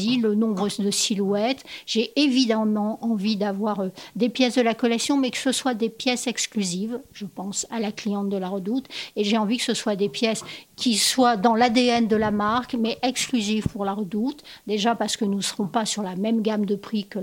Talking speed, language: 215 wpm, French